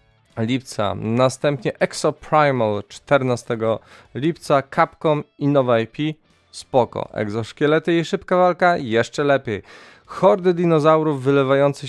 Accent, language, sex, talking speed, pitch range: native, Polish, male, 100 wpm, 115-145 Hz